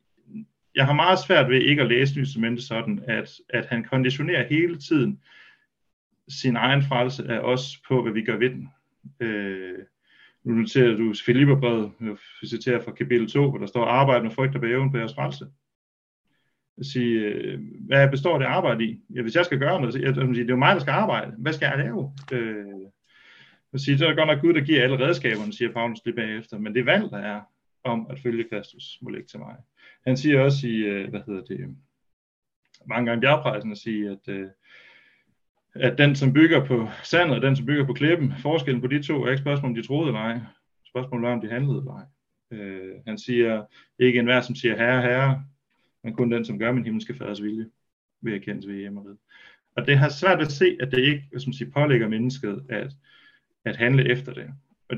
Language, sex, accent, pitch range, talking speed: Danish, male, native, 110-135 Hz, 205 wpm